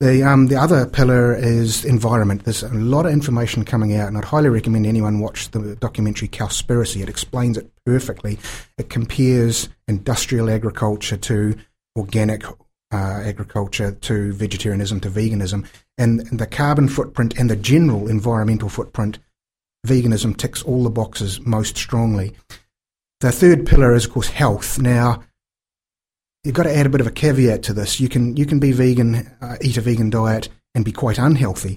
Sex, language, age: male, English, 30-49